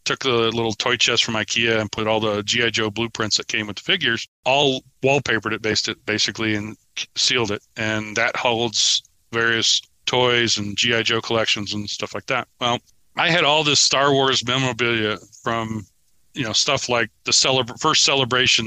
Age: 40-59